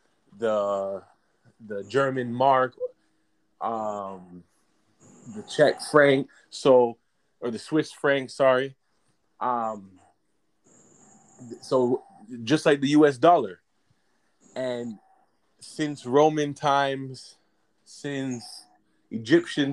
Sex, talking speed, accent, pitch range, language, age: male, 80 wpm, American, 110-135 Hz, English, 20-39